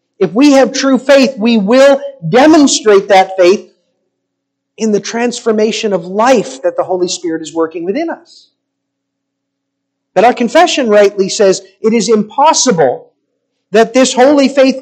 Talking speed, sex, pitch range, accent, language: 140 wpm, male, 185-270 Hz, American, English